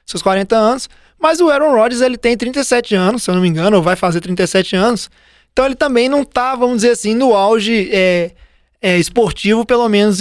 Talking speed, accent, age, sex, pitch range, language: 210 wpm, Brazilian, 20-39, male, 190-230 Hz, Portuguese